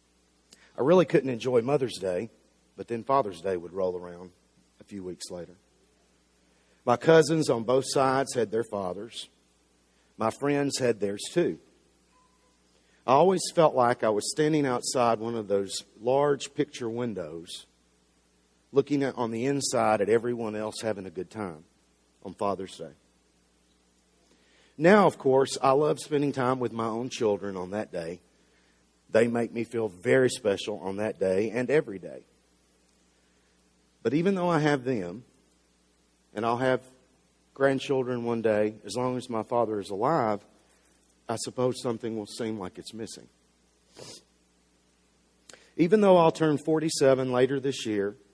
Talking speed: 150 wpm